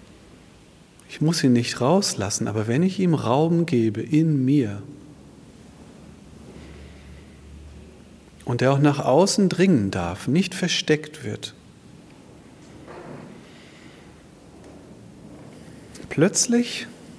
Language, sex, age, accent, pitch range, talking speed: German, male, 40-59, German, 105-155 Hz, 85 wpm